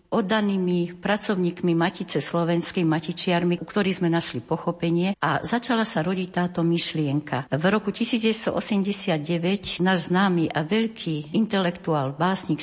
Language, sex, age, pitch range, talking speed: Slovak, female, 60-79, 160-185 Hz, 120 wpm